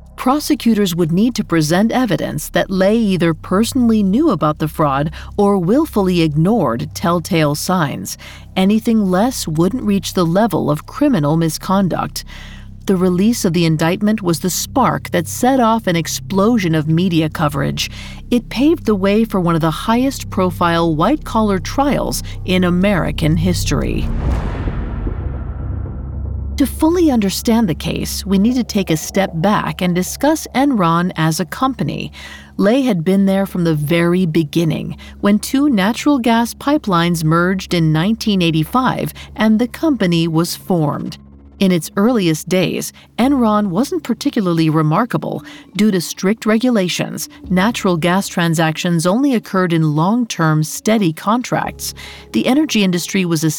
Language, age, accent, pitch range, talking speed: English, 40-59, American, 165-230 Hz, 140 wpm